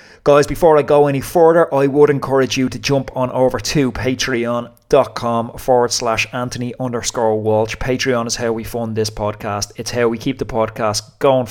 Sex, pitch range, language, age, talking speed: male, 110-125 Hz, English, 20-39, 180 wpm